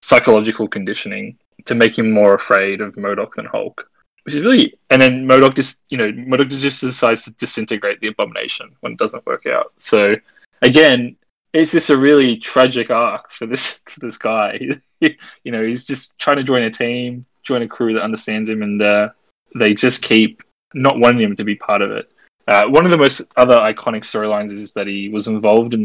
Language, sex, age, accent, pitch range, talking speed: English, male, 20-39, Australian, 105-125 Hz, 200 wpm